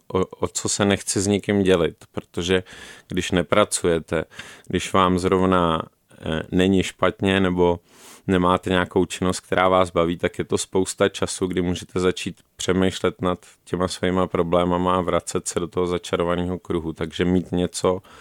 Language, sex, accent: Czech, male, native